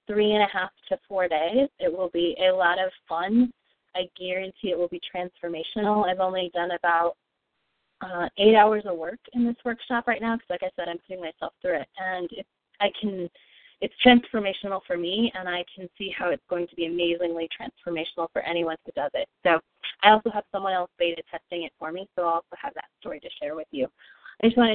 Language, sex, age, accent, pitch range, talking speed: English, female, 20-39, American, 175-215 Hz, 220 wpm